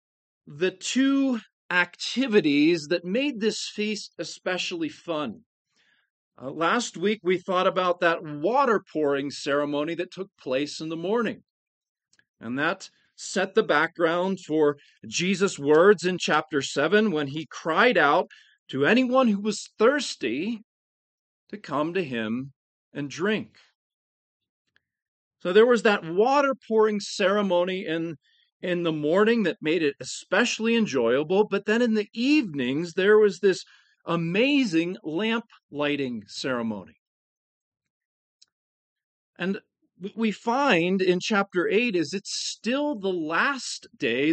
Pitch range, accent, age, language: 165-220 Hz, American, 40-59, English